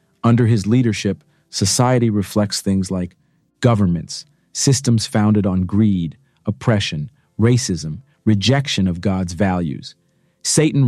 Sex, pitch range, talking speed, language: male, 100-125 Hz, 105 wpm, English